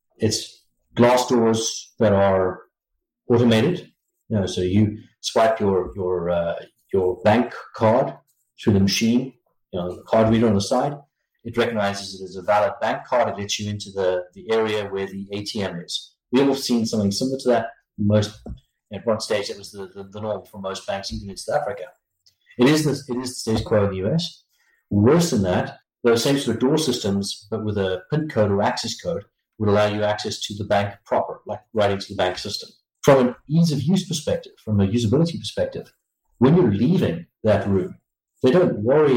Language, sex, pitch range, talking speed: English, male, 100-125 Hz, 200 wpm